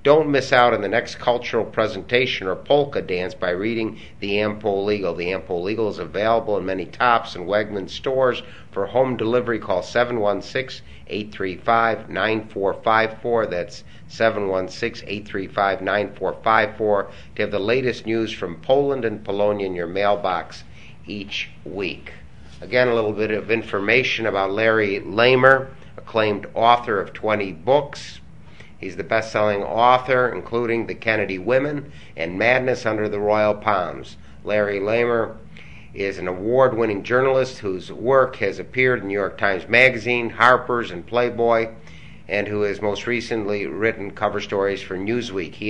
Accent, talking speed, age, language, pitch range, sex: American, 140 wpm, 50-69, English, 100-120 Hz, male